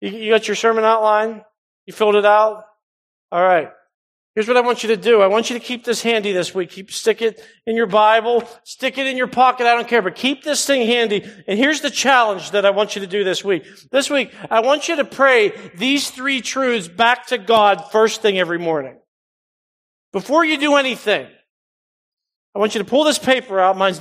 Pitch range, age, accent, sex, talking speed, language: 190-245 Hz, 40-59, American, male, 220 wpm, English